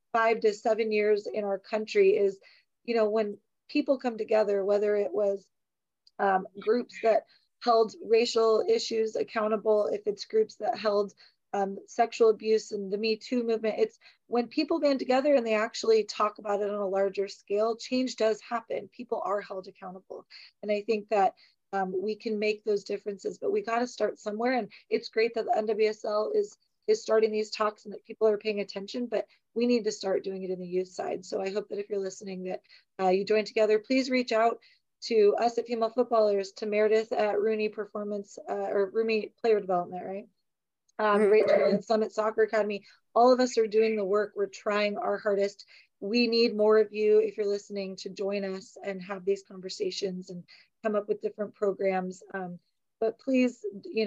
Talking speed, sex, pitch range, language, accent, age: 195 wpm, female, 200-230 Hz, English, American, 30-49